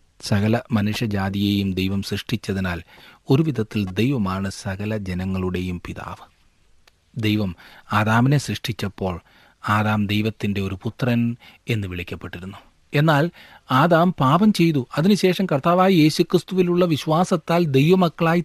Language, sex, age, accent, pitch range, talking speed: Malayalam, male, 40-59, native, 95-150 Hz, 90 wpm